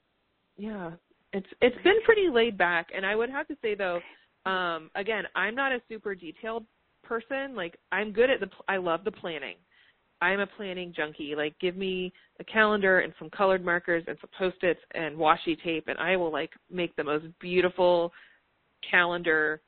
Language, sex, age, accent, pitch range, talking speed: English, female, 30-49, American, 160-200 Hz, 180 wpm